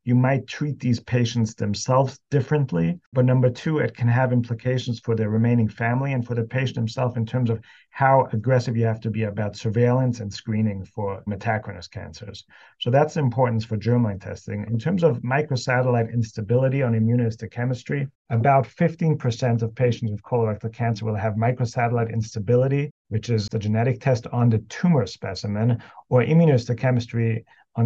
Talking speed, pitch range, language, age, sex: 160 wpm, 110-130 Hz, English, 40-59, male